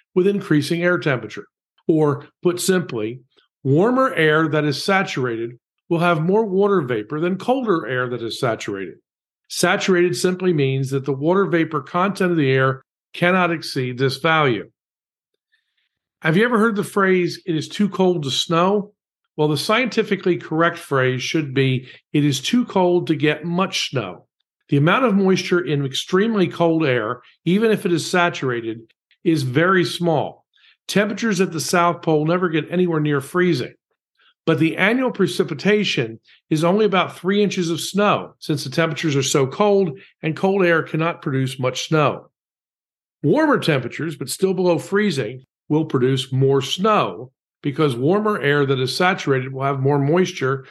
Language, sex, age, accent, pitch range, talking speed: English, male, 50-69, American, 140-185 Hz, 160 wpm